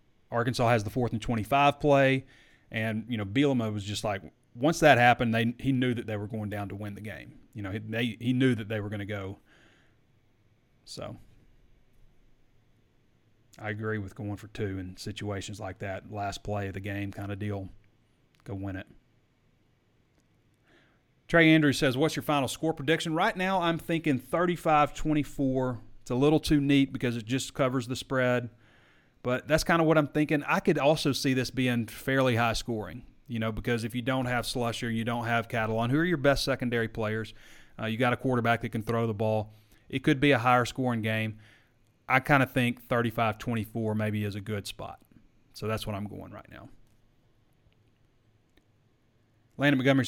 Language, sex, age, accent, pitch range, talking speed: English, male, 30-49, American, 110-130 Hz, 190 wpm